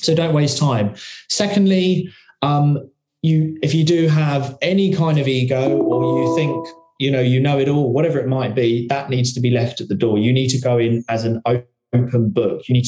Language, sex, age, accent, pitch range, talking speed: English, male, 20-39, British, 120-145 Hz, 220 wpm